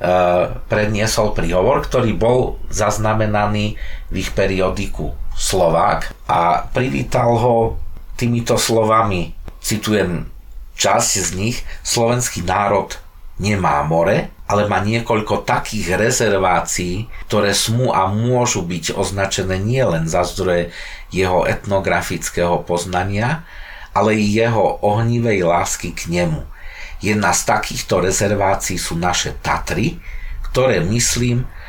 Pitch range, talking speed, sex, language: 90-110 Hz, 105 wpm, male, Slovak